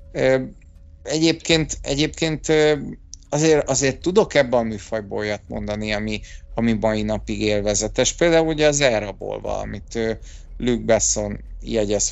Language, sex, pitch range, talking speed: Hungarian, male, 110-145 Hz, 115 wpm